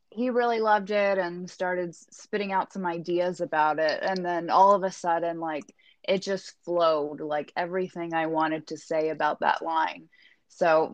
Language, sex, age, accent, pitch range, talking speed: English, female, 20-39, American, 165-195 Hz, 175 wpm